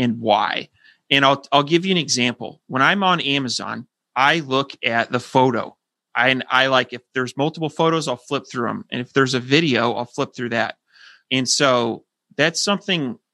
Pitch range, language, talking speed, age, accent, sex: 125-150 Hz, English, 190 wpm, 30-49, American, male